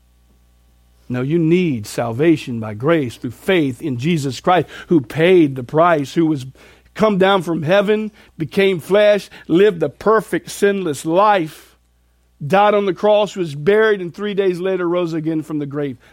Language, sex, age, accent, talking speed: English, male, 50-69, American, 160 wpm